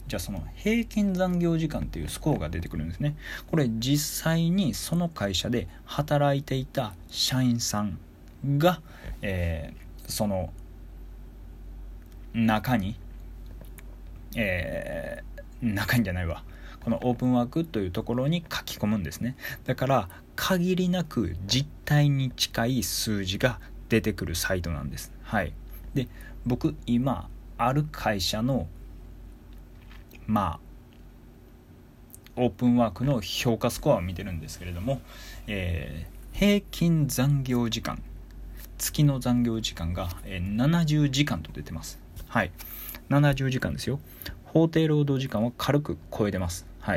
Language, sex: Japanese, male